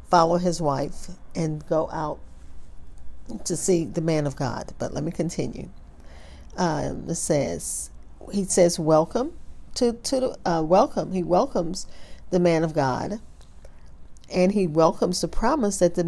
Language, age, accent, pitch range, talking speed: English, 40-59, American, 140-190 Hz, 145 wpm